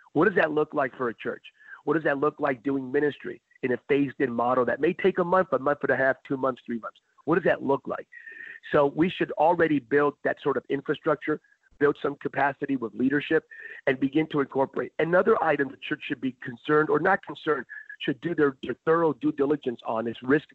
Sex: male